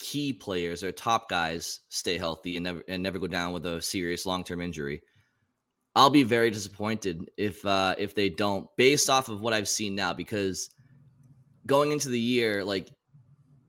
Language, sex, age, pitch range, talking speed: English, male, 20-39, 100-130 Hz, 175 wpm